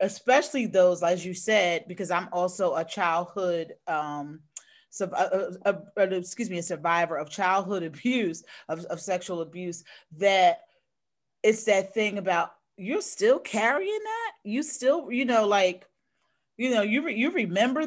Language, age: English, 40-59